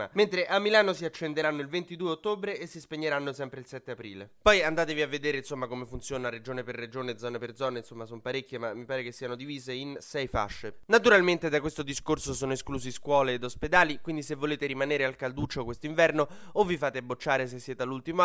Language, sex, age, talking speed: Italian, male, 20-39, 210 wpm